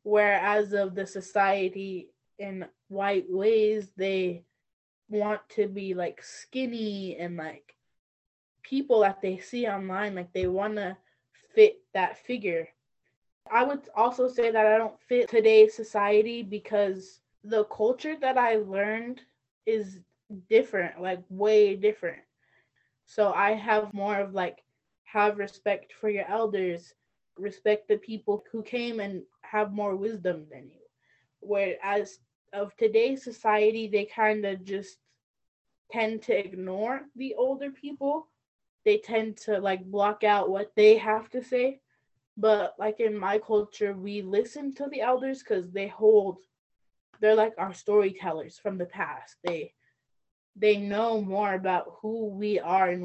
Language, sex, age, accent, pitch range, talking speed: English, female, 20-39, American, 185-220 Hz, 140 wpm